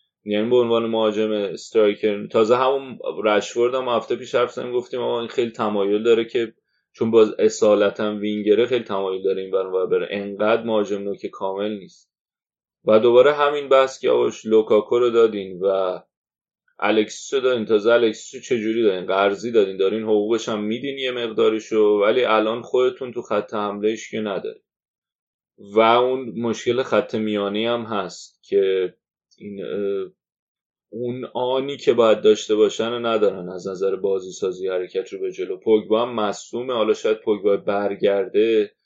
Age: 30-49